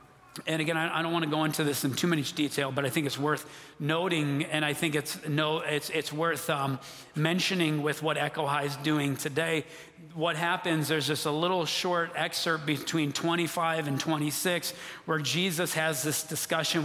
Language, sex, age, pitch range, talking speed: English, male, 40-59, 145-165 Hz, 190 wpm